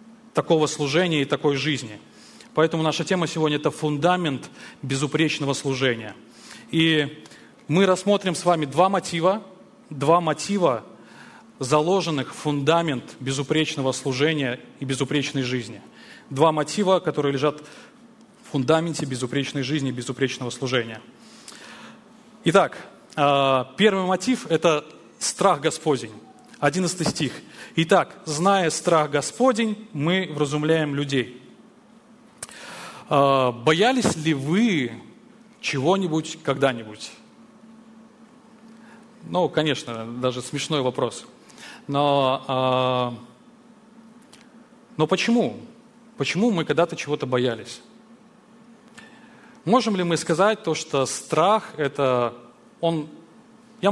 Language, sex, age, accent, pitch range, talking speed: Russian, male, 20-39, native, 140-220 Hz, 95 wpm